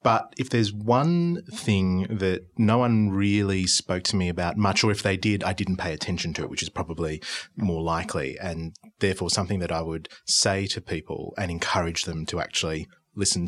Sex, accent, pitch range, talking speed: male, Australian, 85-105 Hz, 195 wpm